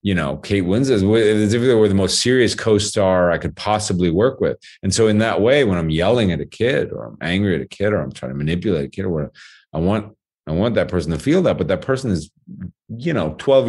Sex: male